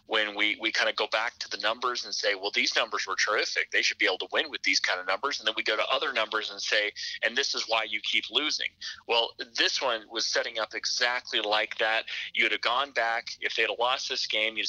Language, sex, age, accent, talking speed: English, male, 30-49, American, 265 wpm